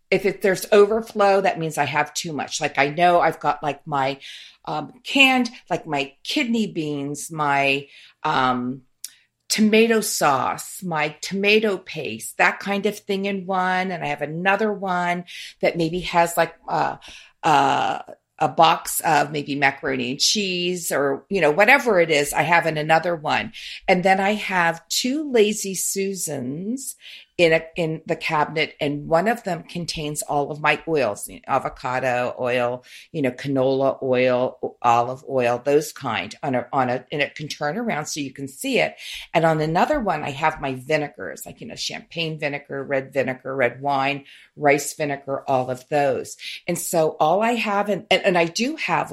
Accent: American